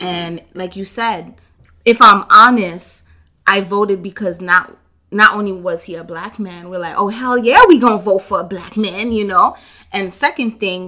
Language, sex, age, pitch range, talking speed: English, female, 20-39, 180-225 Hz, 200 wpm